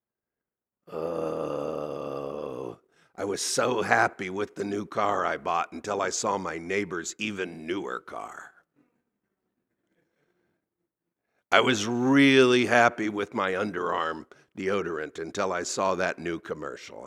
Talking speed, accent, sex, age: 115 wpm, American, male, 60-79